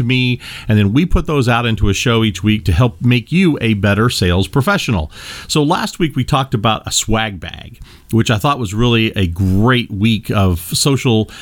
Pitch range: 100-135 Hz